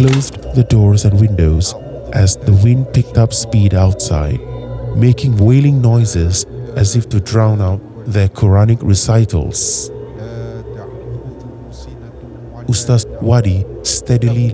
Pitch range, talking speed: 100-125 Hz, 105 wpm